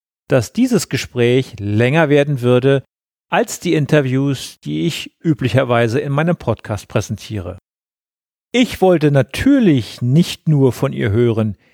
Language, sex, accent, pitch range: German, male, German, 115-155 Hz